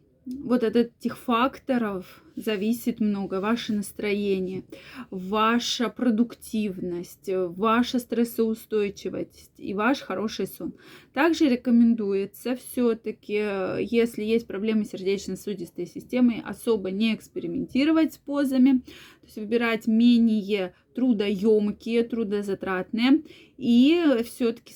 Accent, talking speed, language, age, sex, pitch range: native, 90 wpm, Russian, 20-39, female, 205-250 Hz